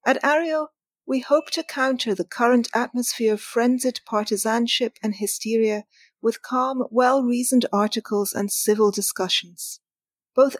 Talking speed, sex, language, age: 125 wpm, female, English, 40-59